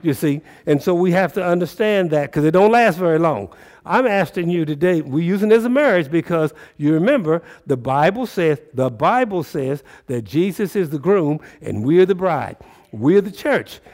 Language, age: English, 60-79